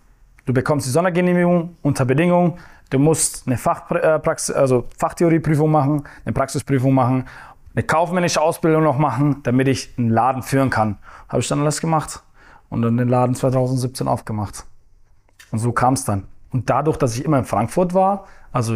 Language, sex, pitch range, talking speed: German, male, 120-150 Hz, 160 wpm